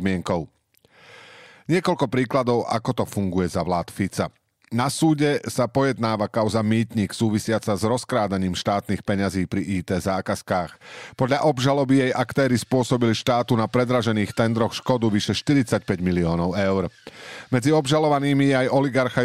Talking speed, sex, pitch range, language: 130 wpm, male, 100-125 Hz, Slovak